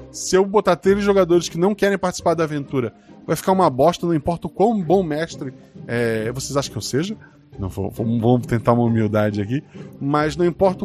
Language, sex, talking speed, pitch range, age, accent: Portuguese, male, 200 wpm, 155-205 Hz, 20-39, Brazilian